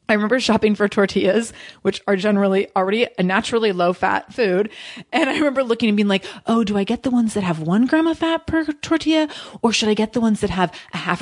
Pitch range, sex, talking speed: 190-270 Hz, female, 235 wpm